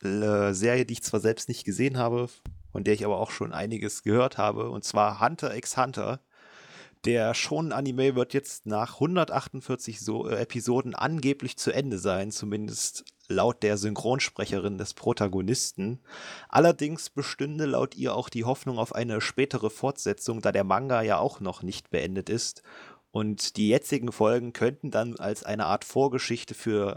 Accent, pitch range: German, 105-125 Hz